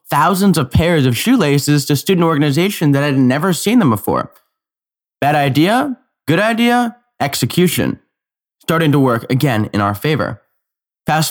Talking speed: 145 wpm